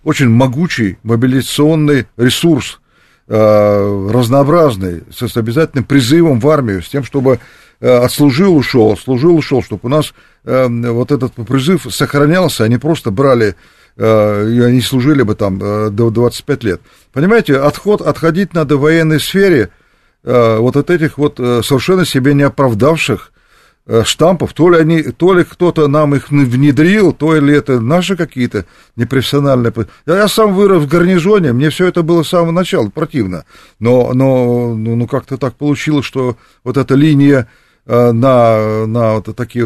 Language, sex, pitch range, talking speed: Russian, male, 115-160 Hz, 140 wpm